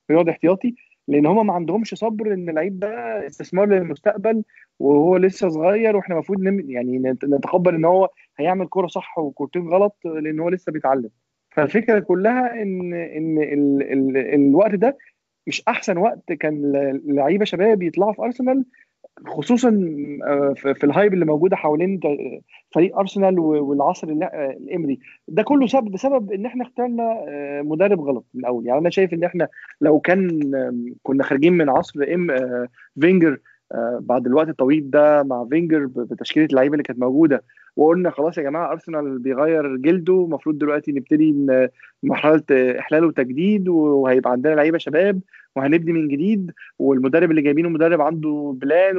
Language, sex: Arabic, male